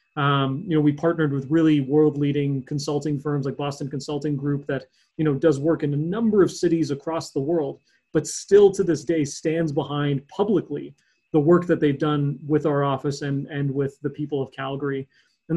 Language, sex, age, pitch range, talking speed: English, male, 30-49, 140-160 Hz, 195 wpm